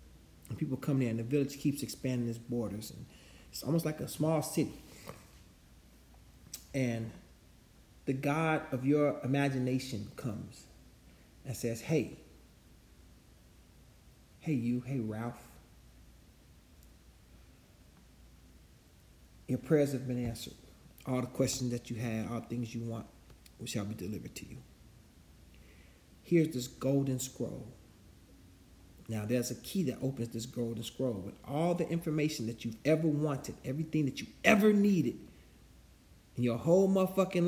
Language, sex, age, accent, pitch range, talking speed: English, male, 40-59, American, 115-155 Hz, 130 wpm